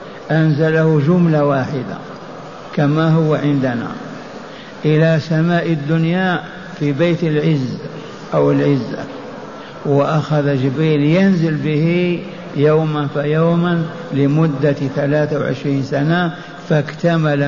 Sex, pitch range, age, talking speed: male, 145-170 Hz, 60-79, 85 wpm